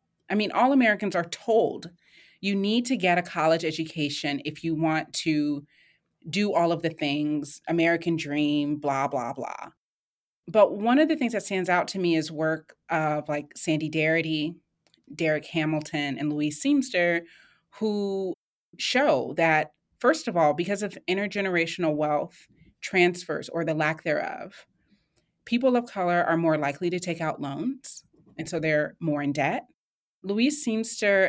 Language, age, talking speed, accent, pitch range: English, 30-49, 155 wpm, American, 155-195 Hz